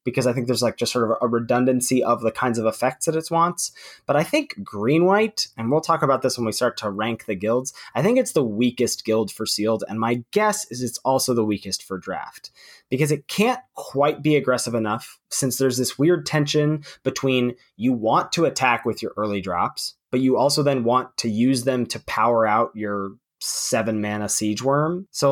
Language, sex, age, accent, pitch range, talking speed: English, male, 20-39, American, 110-150 Hz, 215 wpm